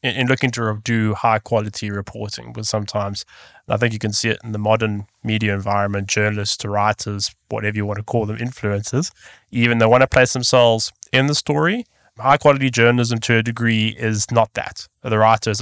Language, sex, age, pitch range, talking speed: English, male, 20-39, 110-130 Hz, 195 wpm